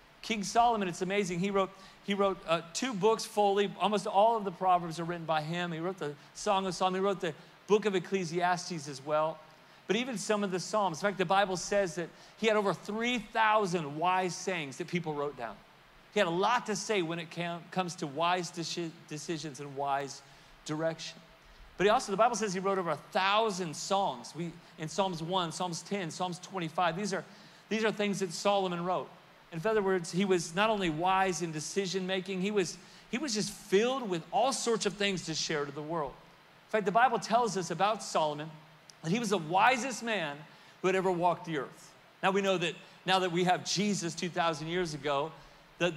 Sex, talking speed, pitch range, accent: male, 210 wpm, 165-200 Hz, American